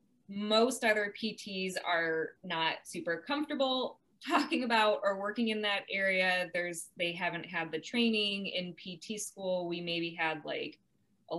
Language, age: English, 20-39